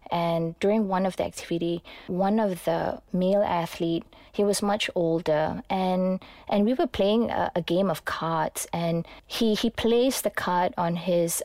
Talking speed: 175 wpm